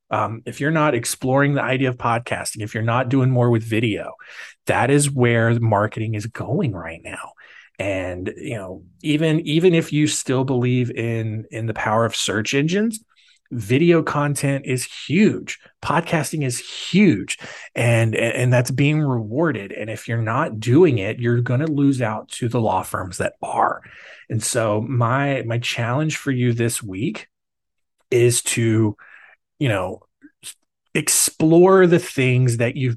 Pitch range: 110-140 Hz